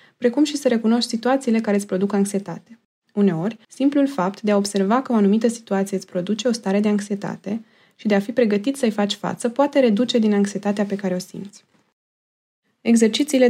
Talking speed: 185 wpm